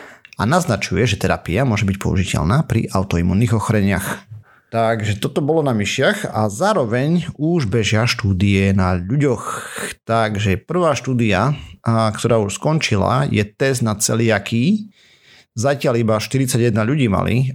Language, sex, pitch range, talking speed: Slovak, male, 100-125 Hz, 125 wpm